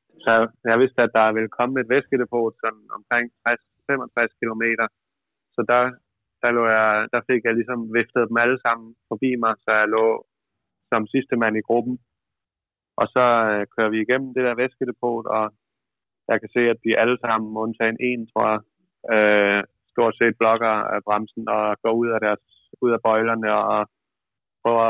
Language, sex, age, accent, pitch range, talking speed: Danish, male, 20-39, native, 110-120 Hz, 175 wpm